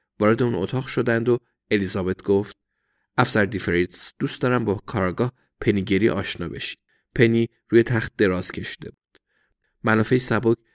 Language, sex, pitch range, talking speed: Persian, male, 95-120 Hz, 130 wpm